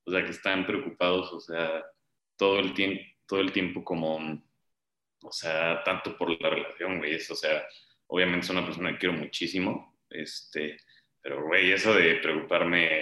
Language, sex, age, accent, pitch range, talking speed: Spanish, male, 20-39, Mexican, 75-90 Hz, 170 wpm